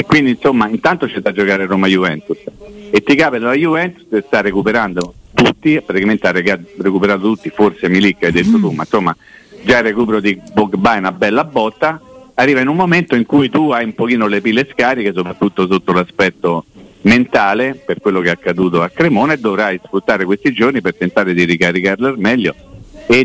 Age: 50-69